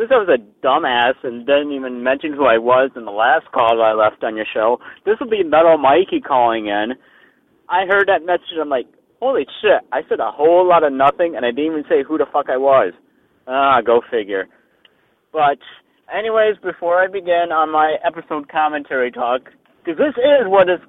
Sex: male